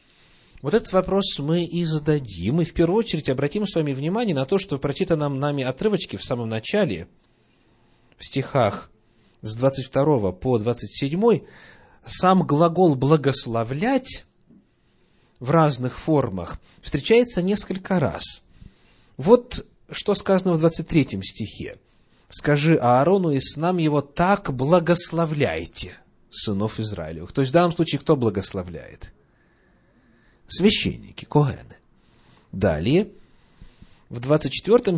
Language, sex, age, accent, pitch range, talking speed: Russian, male, 30-49, native, 115-170 Hz, 115 wpm